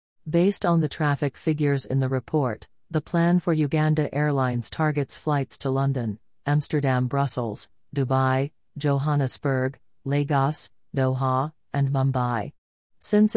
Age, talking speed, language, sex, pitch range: 40-59, 115 wpm, English, female, 130-165 Hz